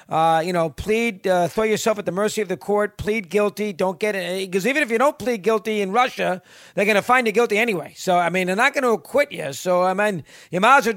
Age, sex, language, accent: 50-69, male, English, American